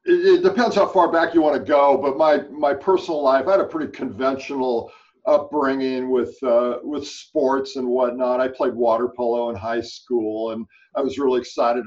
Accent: American